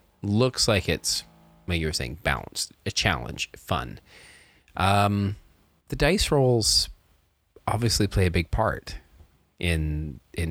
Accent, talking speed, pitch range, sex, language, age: American, 120 wpm, 80-105 Hz, male, English, 30-49